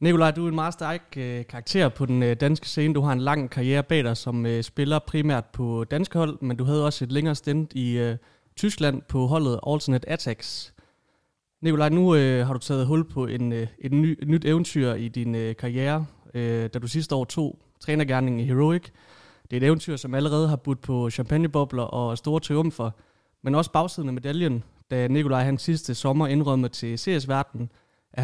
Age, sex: 30-49, male